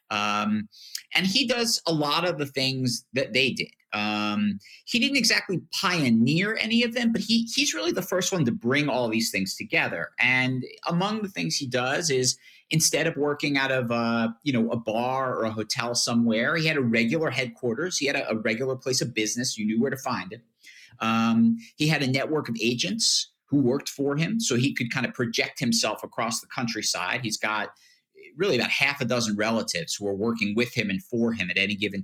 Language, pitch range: English, 115-160 Hz